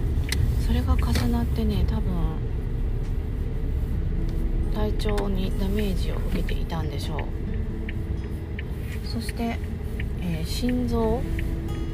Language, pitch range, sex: Japanese, 80-105 Hz, female